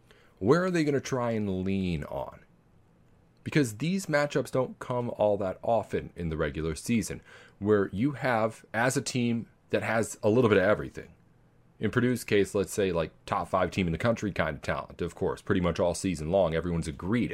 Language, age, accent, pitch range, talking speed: English, 40-59, American, 95-125 Hz, 200 wpm